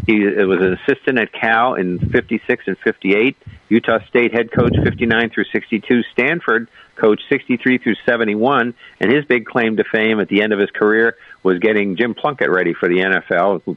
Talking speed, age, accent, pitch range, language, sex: 190 wpm, 50-69, American, 95-115 Hz, English, male